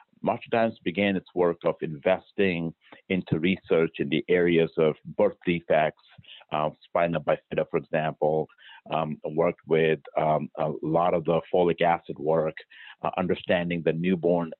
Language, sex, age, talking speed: English, male, 50-69, 145 wpm